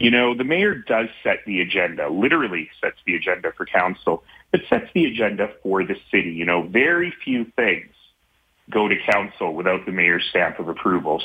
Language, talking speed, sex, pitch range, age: English, 185 wpm, male, 90-110 Hz, 30-49